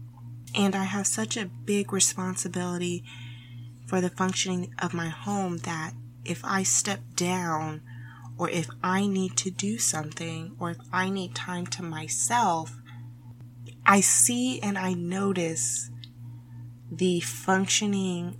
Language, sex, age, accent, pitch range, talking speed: English, female, 20-39, American, 160-190 Hz, 125 wpm